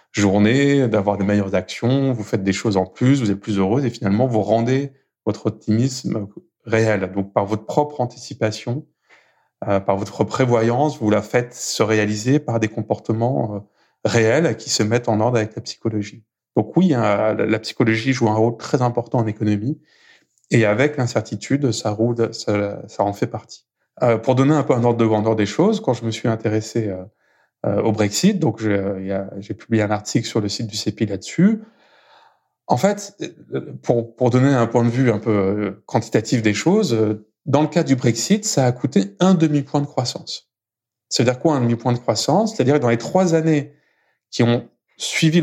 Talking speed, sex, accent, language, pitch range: 190 wpm, male, French, French, 110-140 Hz